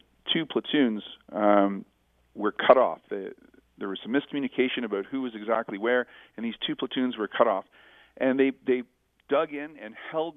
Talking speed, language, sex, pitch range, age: 175 wpm, English, male, 100-125 Hz, 40-59